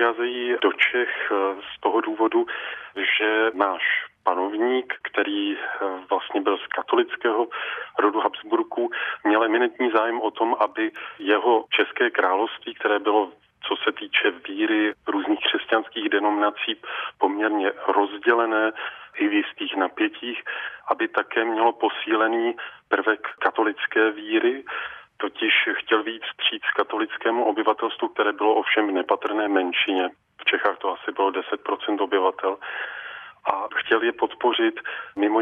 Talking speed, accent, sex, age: 120 wpm, native, male, 40-59